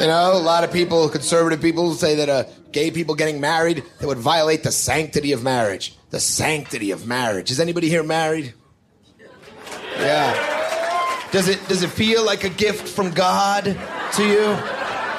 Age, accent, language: 30-49, American, Danish